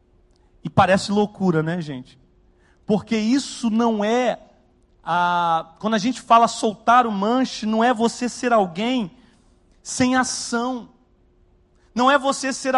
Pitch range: 225-290 Hz